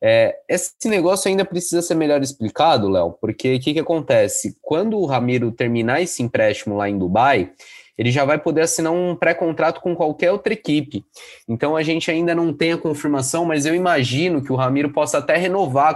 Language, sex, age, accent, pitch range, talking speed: Portuguese, male, 20-39, Brazilian, 115-160 Hz, 185 wpm